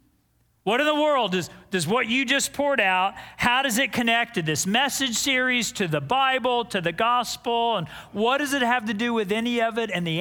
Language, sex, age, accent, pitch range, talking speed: English, male, 40-59, American, 175-240 Hz, 225 wpm